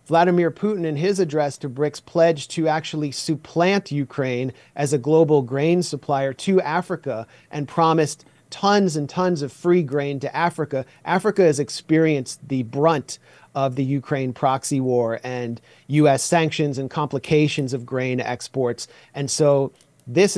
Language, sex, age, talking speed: English, male, 40-59, 145 wpm